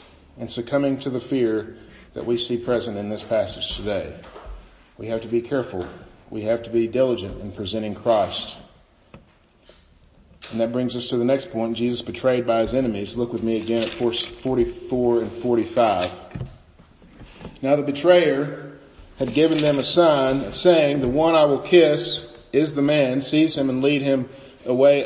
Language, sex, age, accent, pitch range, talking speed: English, male, 40-59, American, 120-155 Hz, 170 wpm